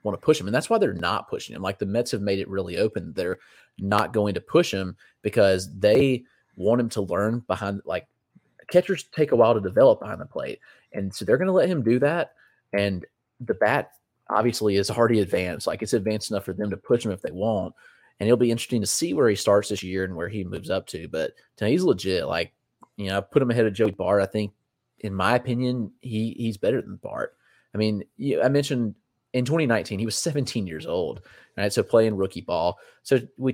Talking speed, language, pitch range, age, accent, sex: 225 wpm, English, 95-120 Hz, 30-49, American, male